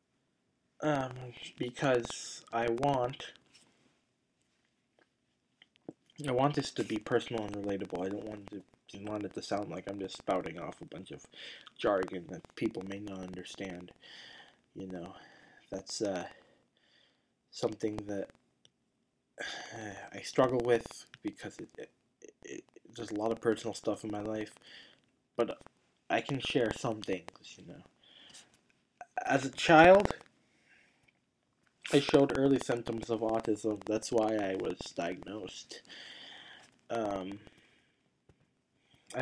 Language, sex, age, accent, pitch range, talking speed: English, male, 20-39, American, 110-135 Hz, 130 wpm